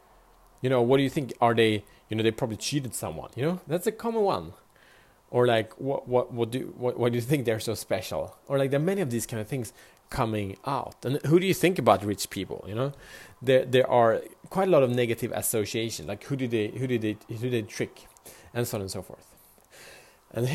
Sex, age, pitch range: male, 30-49, 110-140 Hz